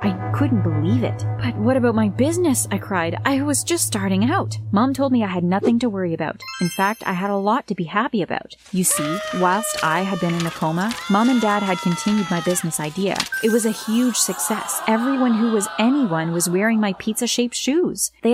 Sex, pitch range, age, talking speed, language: female, 175-235 Hz, 30-49, 220 wpm, English